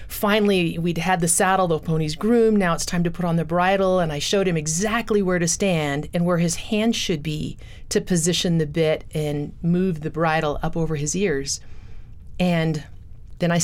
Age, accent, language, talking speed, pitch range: 40-59, American, English, 200 wpm, 165-225 Hz